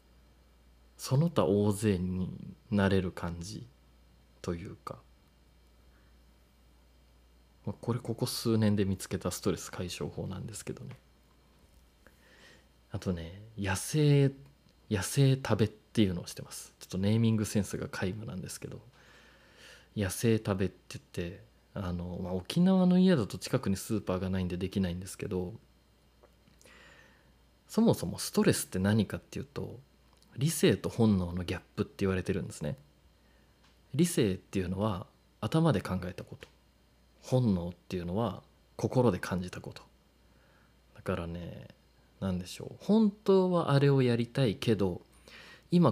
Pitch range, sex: 85-125 Hz, male